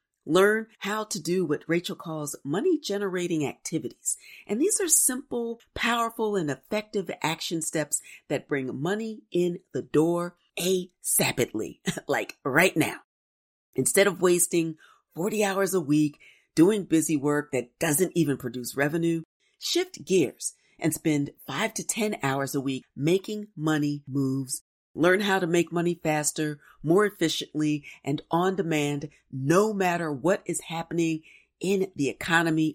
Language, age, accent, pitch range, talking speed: English, 40-59, American, 150-195 Hz, 135 wpm